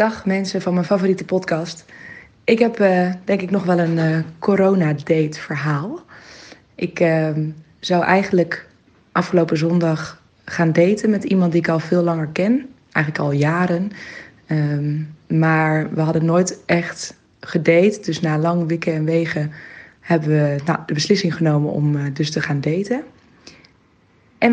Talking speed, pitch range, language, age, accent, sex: 155 wpm, 160-195 Hz, Dutch, 20-39, Dutch, female